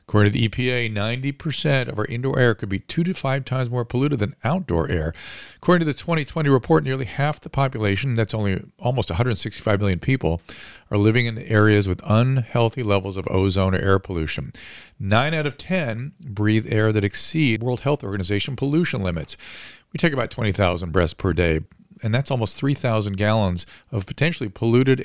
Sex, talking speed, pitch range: male, 180 wpm, 100-135 Hz